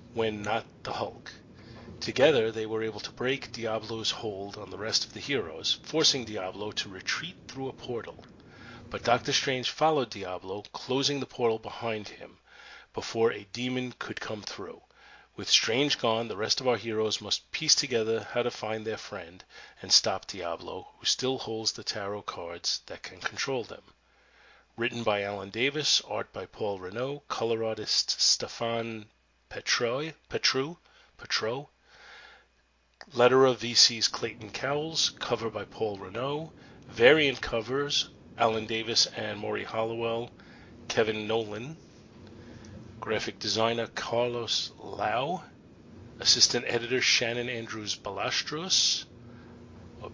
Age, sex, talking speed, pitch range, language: 30-49, male, 135 wpm, 110-125 Hz, English